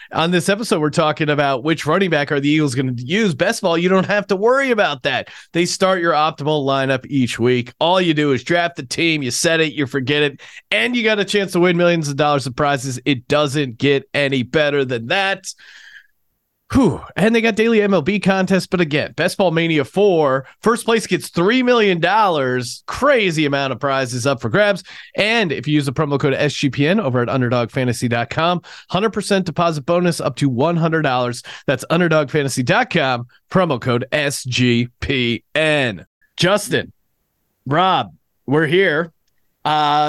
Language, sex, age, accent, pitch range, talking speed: English, male, 30-49, American, 140-190 Hz, 175 wpm